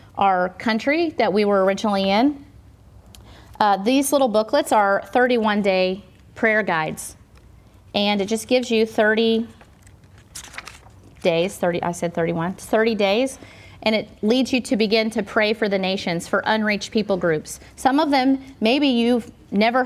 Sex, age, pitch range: female, 30-49, 195-245 Hz